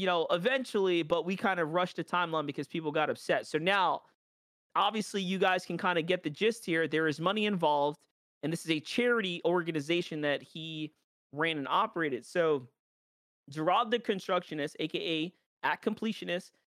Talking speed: 175 wpm